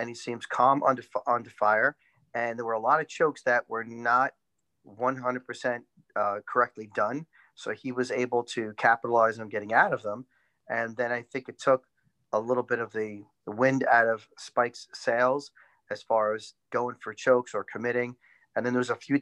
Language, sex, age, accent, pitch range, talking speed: English, male, 40-59, American, 110-130 Hz, 195 wpm